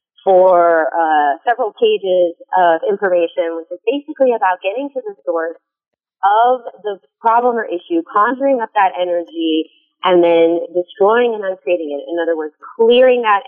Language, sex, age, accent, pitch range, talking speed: English, female, 30-49, American, 170-215 Hz, 150 wpm